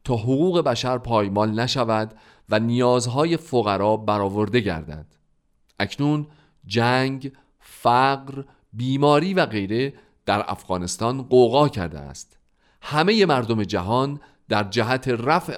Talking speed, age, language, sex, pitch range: 105 wpm, 40-59, Persian, male, 105-145 Hz